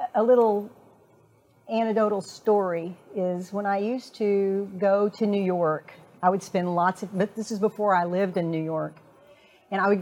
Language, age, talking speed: English, 50-69, 180 wpm